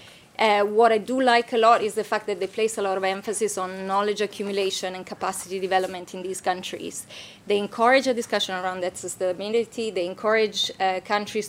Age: 20-39